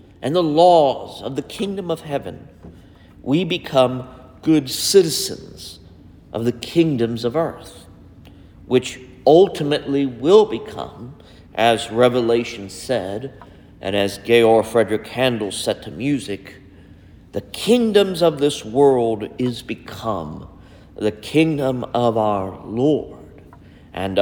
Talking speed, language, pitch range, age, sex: 110 wpm, English, 100-150 Hz, 50-69, male